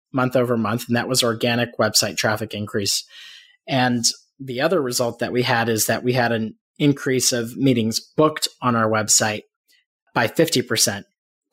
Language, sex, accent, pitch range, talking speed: English, male, American, 115-135 Hz, 160 wpm